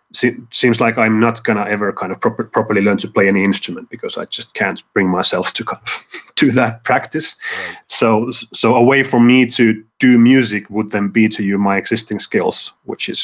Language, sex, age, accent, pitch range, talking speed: English, male, 30-49, Finnish, 110-125 Hz, 220 wpm